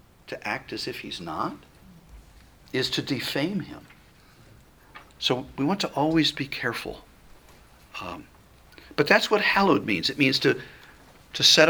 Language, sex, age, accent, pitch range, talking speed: English, male, 50-69, American, 125-160 Hz, 145 wpm